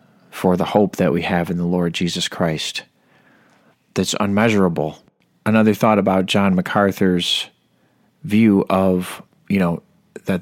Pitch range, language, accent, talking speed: 90-110 Hz, English, American, 130 wpm